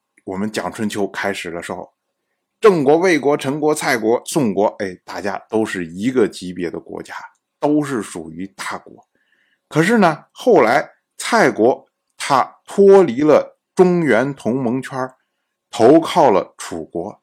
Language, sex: Chinese, male